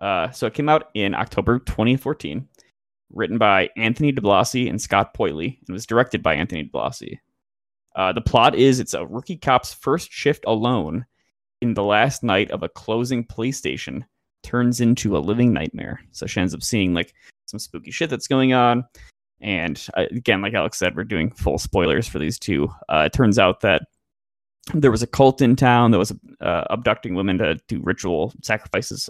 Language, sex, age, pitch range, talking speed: English, male, 20-39, 105-125 Hz, 190 wpm